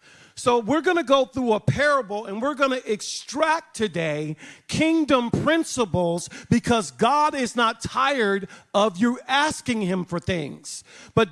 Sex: male